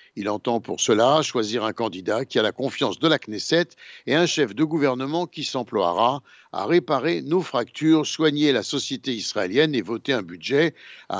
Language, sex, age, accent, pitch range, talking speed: Italian, male, 60-79, French, 125-170 Hz, 180 wpm